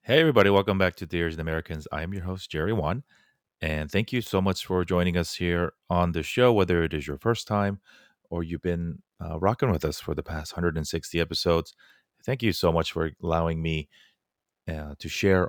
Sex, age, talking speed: male, 30-49, 210 wpm